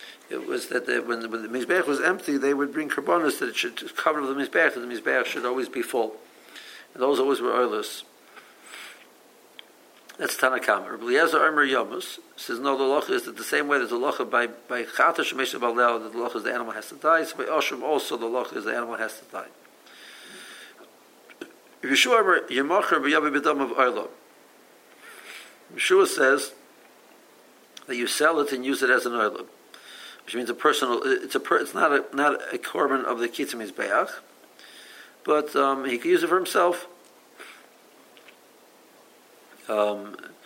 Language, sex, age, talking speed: English, male, 60-79, 155 wpm